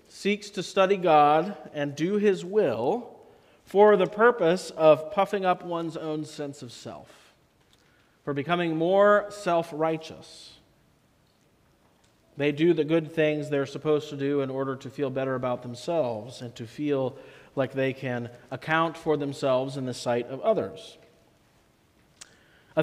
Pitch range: 130-175 Hz